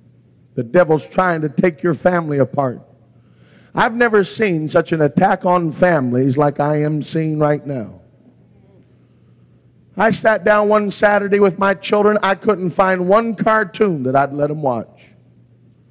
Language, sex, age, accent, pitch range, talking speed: English, male, 50-69, American, 155-200 Hz, 150 wpm